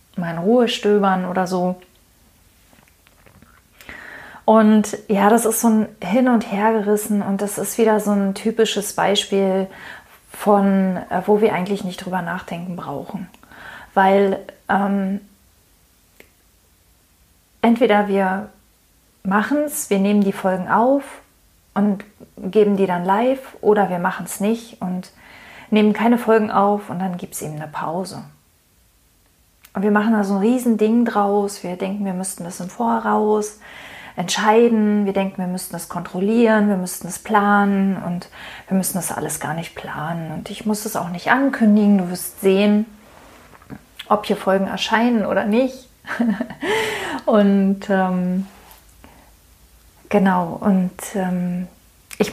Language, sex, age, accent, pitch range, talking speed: German, female, 30-49, German, 180-215 Hz, 140 wpm